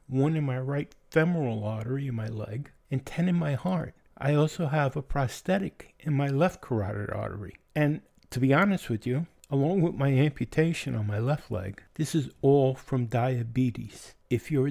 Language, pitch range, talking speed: English, 120-155 Hz, 185 wpm